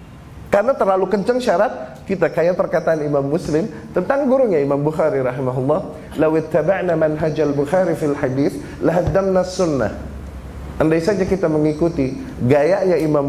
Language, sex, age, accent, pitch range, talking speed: Indonesian, male, 30-49, native, 125-180 Hz, 130 wpm